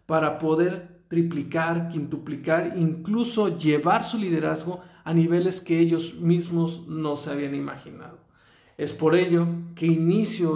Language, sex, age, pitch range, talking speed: Spanish, male, 50-69, 155-180 Hz, 125 wpm